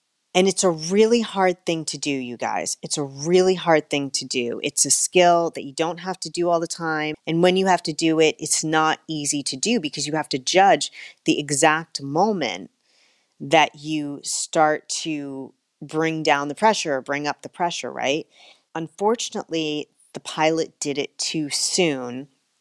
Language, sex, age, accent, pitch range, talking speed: English, female, 30-49, American, 145-180 Hz, 185 wpm